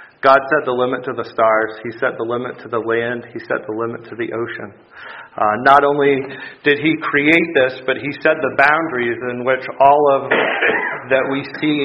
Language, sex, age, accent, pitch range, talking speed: English, male, 40-59, American, 115-140 Hz, 205 wpm